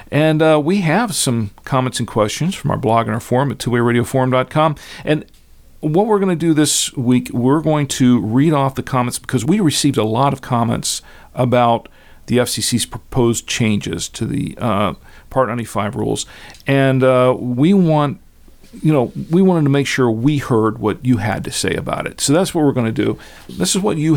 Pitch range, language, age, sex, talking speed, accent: 115-145 Hz, English, 50-69, male, 190 wpm, American